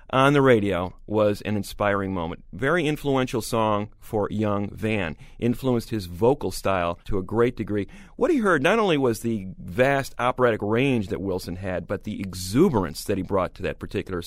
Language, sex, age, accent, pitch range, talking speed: English, male, 40-59, American, 105-155 Hz, 180 wpm